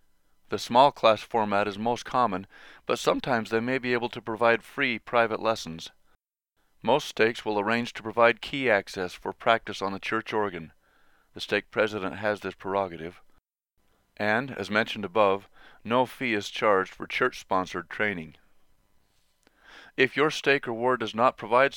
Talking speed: 155 wpm